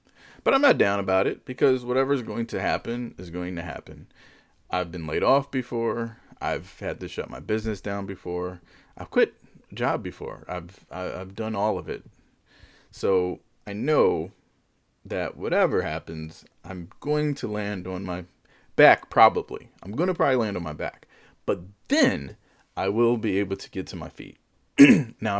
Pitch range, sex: 90-125 Hz, male